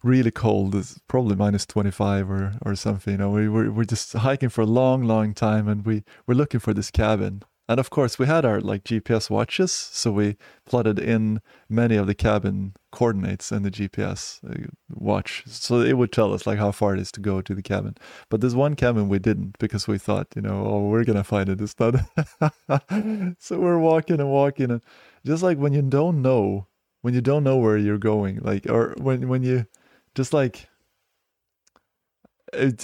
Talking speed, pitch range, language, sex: 200 wpm, 105-130 Hz, English, male